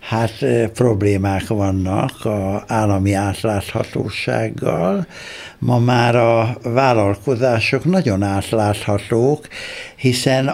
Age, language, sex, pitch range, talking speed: 60-79, Hungarian, male, 100-140 Hz, 75 wpm